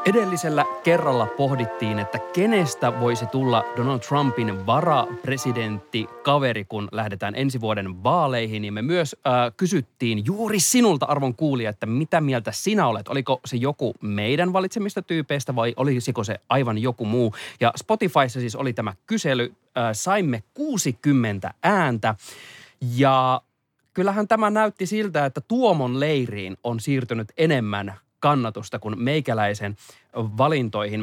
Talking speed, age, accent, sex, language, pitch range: 130 wpm, 30-49, native, male, Finnish, 115-150 Hz